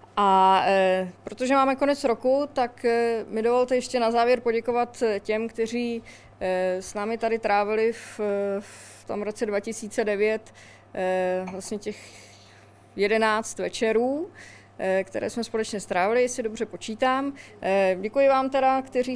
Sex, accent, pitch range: female, native, 195-235 Hz